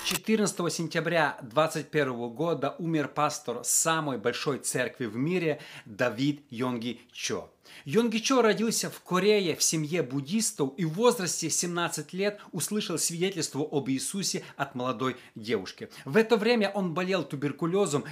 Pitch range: 140-175 Hz